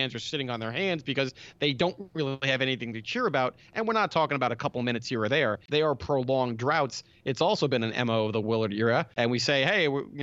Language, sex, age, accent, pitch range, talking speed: English, male, 30-49, American, 120-150 Hz, 250 wpm